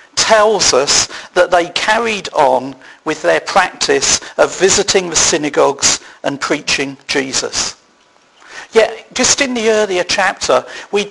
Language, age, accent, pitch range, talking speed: English, 50-69, British, 170-210 Hz, 125 wpm